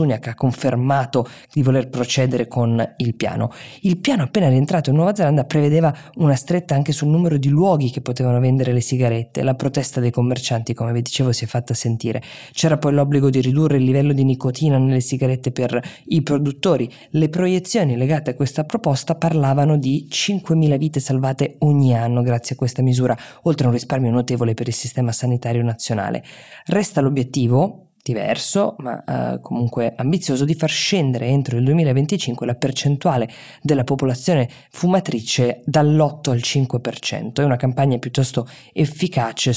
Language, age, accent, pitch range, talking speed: Italian, 20-39, native, 120-150 Hz, 160 wpm